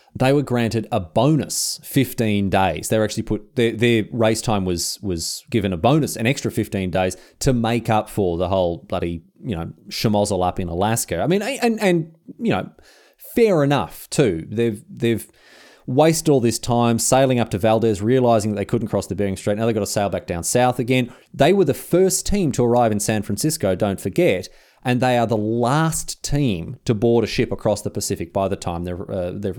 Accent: Australian